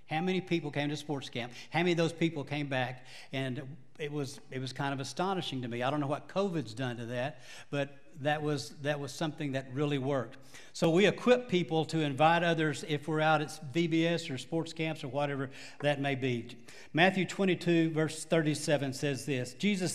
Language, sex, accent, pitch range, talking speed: English, male, American, 125-160 Hz, 205 wpm